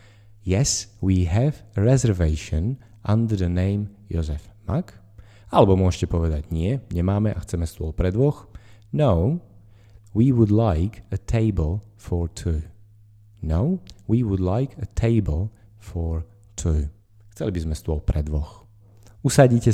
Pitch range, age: 90-110 Hz, 30-49